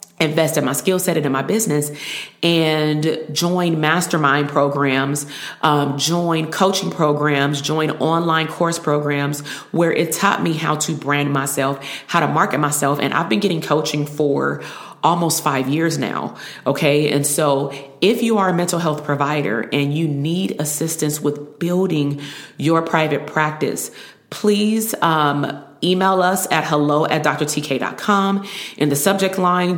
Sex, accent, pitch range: female, American, 145-170 Hz